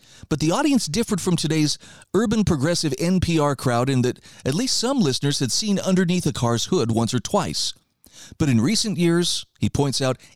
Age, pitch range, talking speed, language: 40-59, 120-175 Hz, 185 wpm, English